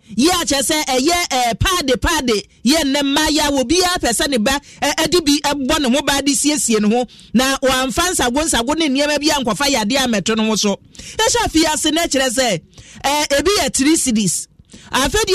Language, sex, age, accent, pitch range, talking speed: English, male, 40-59, Nigerian, 240-325 Hz, 200 wpm